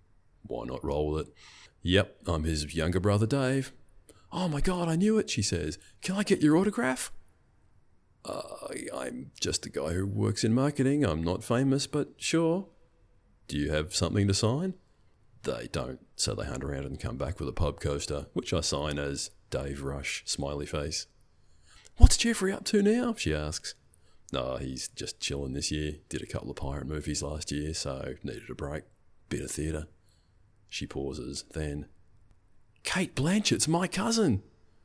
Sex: male